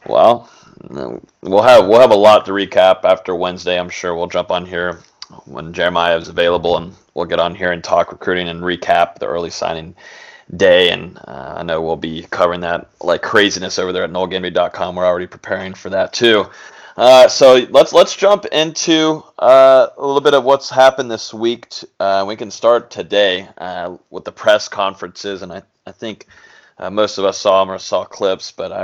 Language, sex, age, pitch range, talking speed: English, male, 20-39, 90-120 Hz, 200 wpm